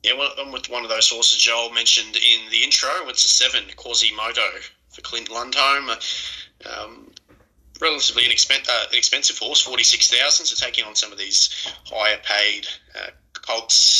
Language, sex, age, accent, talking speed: English, male, 20-39, Australian, 155 wpm